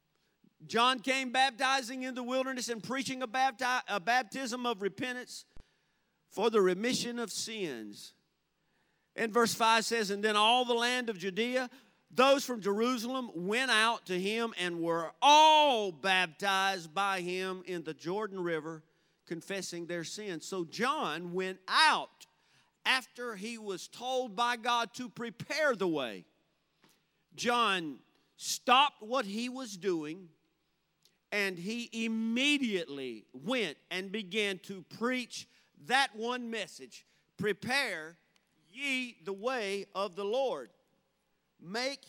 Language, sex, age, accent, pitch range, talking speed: English, male, 50-69, American, 190-250 Hz, 125 wpm